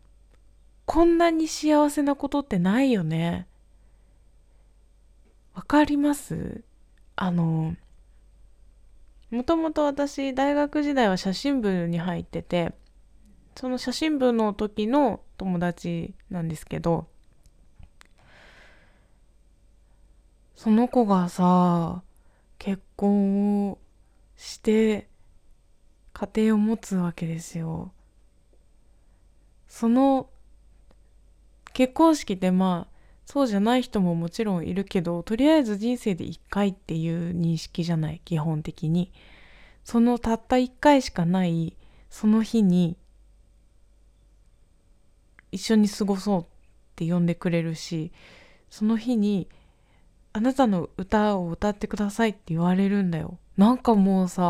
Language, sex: Japanese, female